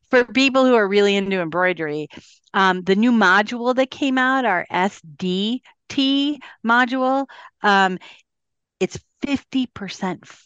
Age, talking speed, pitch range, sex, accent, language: 40-59, 115 wpm, 180-260 Hz, female, American, English